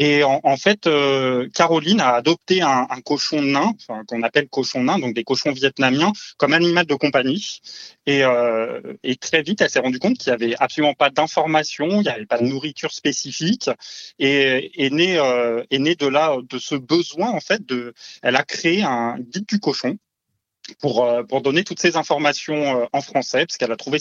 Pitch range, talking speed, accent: 120-155 Hz, 200 wpm, French